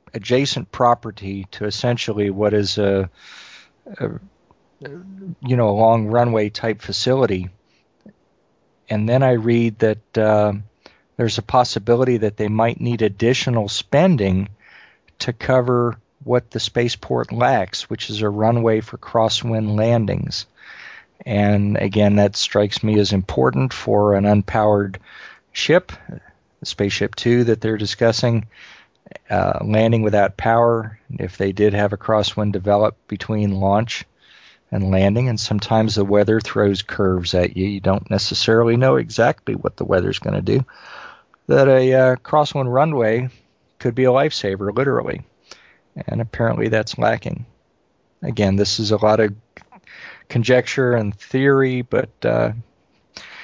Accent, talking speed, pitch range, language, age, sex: American, 130 wpm, 100-120 Hz, English, 40-59, male